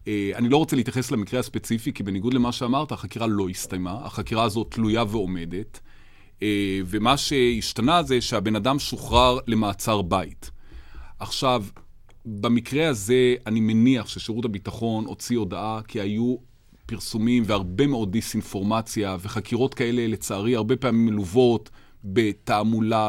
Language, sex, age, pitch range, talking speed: Hebrew, male, 30-49, 100-125 Hz, 120 wpm